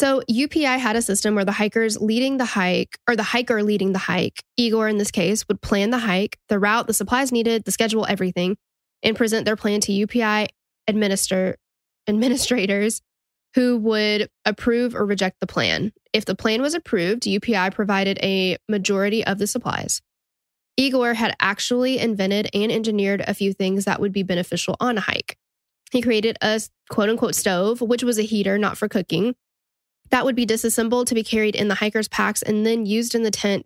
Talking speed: 185 wpm